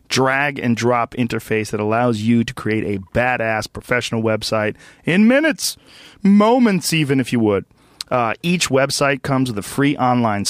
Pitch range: 110-140 Hz